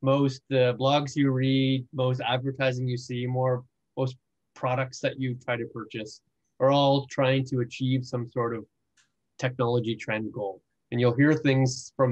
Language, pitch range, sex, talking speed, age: English, 120-135 Hz, male, 165 wpm, 20-39